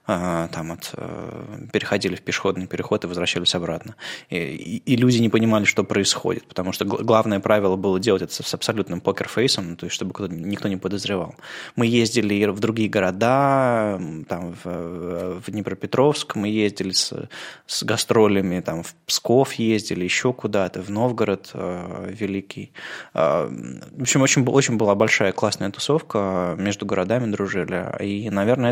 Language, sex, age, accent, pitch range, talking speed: Russian, male, 20-39, native, 95-115 Hz, 155 wpm